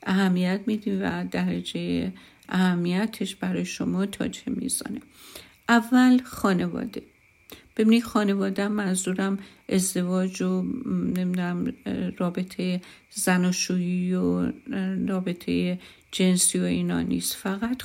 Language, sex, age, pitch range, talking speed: Persian, female, 50-69, 180-205 Hz, 95 wpm